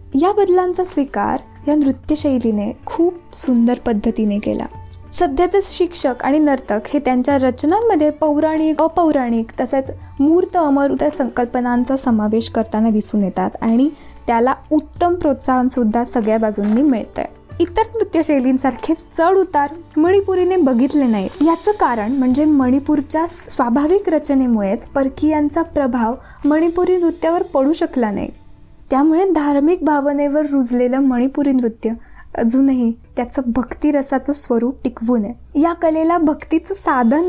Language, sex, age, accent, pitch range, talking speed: Marathi, female, 20-39, native, 245-330 Hz, 115 wpm